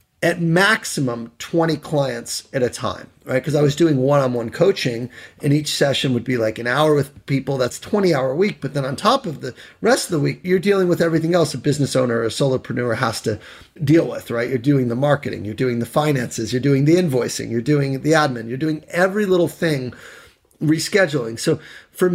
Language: English